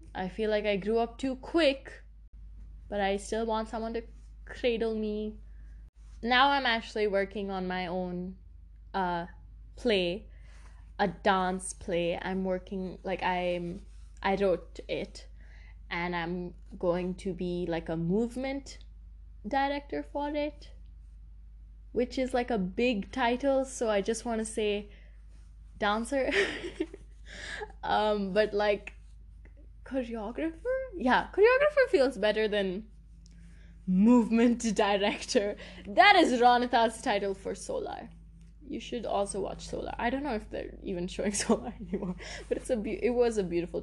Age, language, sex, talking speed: 10-29, English, female, 135 wpm